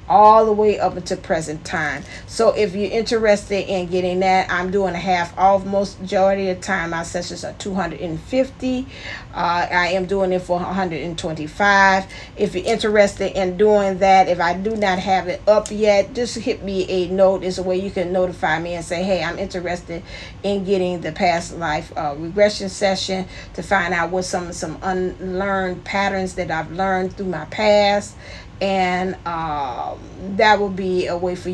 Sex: female